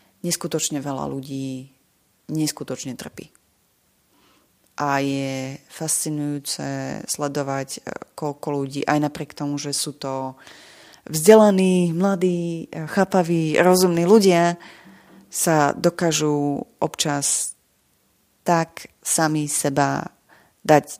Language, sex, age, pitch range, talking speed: English, female, 30-49, 140-165 Hz, 85 wpm